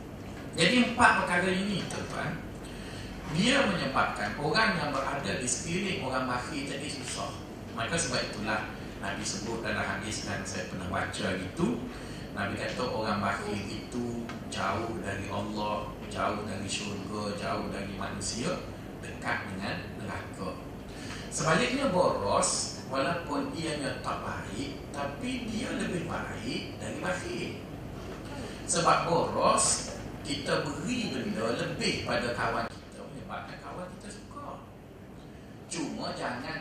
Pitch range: 95-145 Hz